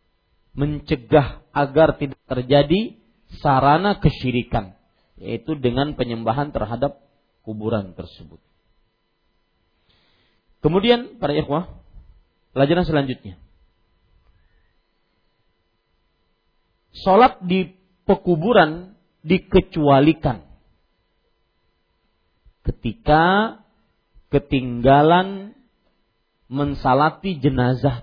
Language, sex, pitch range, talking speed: Malay, male, 110-160 Hz, 55 wpm